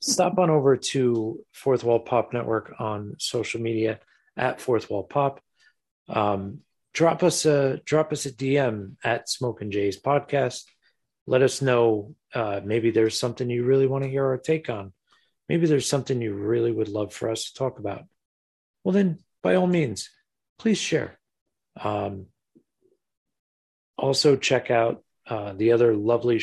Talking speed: 160 wpm